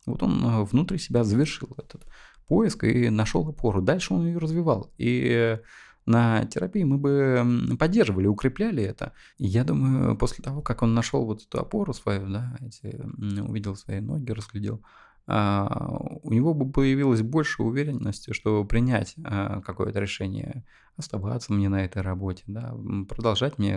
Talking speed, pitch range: 145 wpm, 105-130 Hz